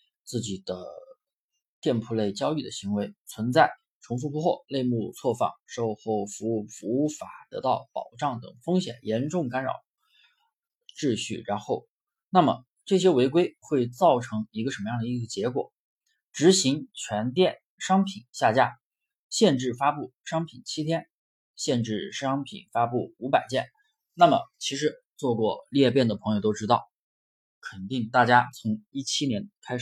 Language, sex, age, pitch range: Chinese, male, 20-39, 110-180 Hz